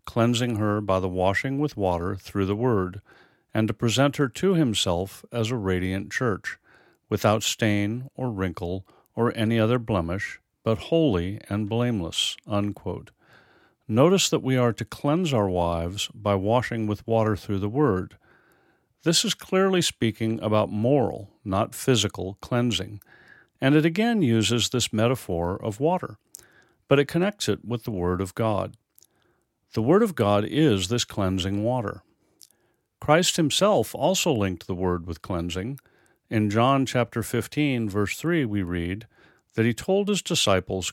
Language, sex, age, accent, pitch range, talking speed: English, male, 50-69, American, 100-135 Hz, 150 wpm